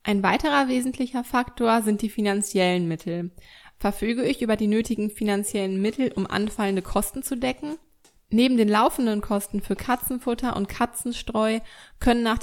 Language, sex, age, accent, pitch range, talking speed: German, female, 20-39, German, 195-240 Hz, 145 wpm